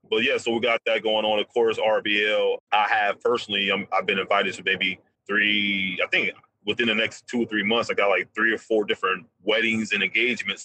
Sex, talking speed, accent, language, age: male, 225 wpm, American, English, 30-49